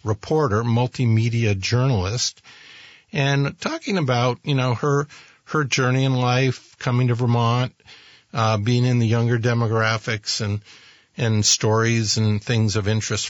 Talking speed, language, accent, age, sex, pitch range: 130 wpm, English, American, 50-69, male, 110-130 Hz